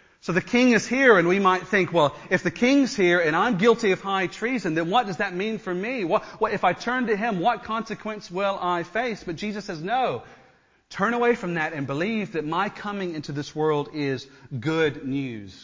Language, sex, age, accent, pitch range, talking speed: English, male, 40-59, American, 120-175 Hz, 225 wpm